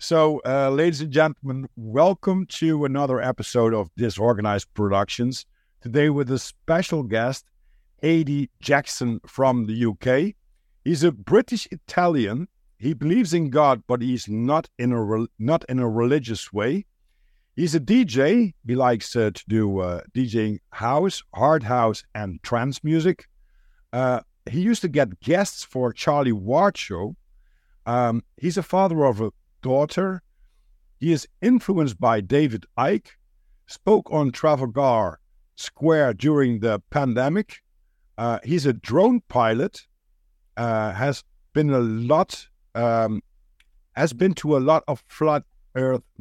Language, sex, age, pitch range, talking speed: English, male, 50-69, 115-160 Hz, 140 wpm